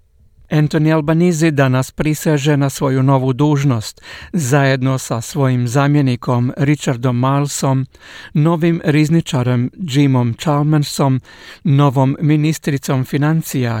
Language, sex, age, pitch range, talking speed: Croatian, male, 60-79, 135-160 Hz, 90 wpm